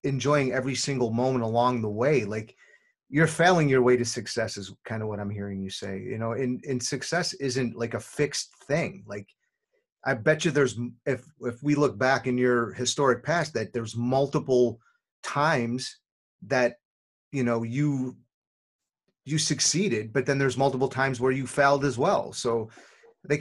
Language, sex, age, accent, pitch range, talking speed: English, male, 30-49, American, 115-145 Hz, 175 wpm